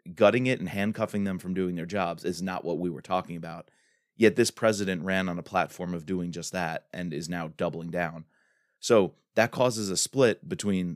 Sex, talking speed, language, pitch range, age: male, 210 wpm, English, 90-110 Hz, 20-39